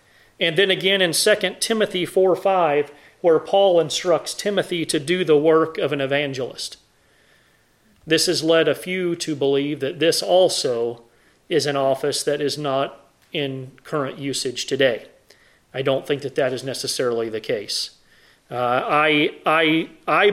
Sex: male